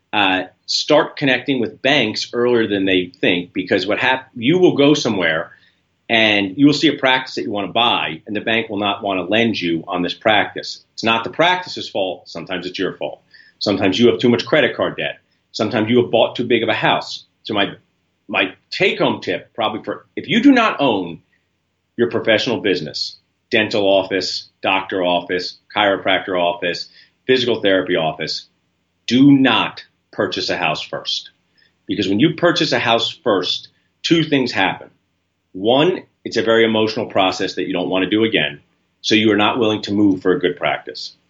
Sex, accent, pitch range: male, American, 95-130 Hz